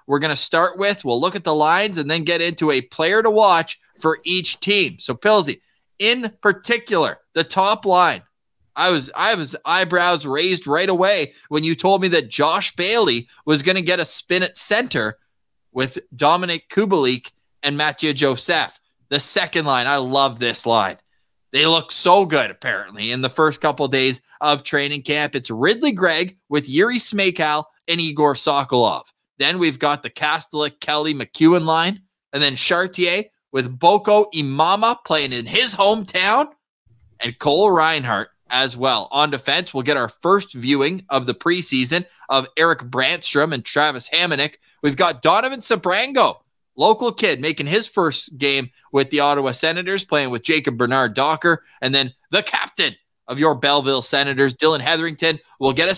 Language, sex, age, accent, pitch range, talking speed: English, male, 20-39, American, 140-180 Hz, 170 wpm